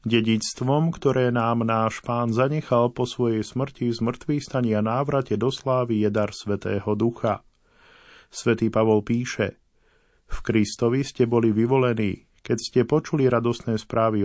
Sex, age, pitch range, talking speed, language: male, 40-59, 110-125 Hz, 130 wpm, Slovak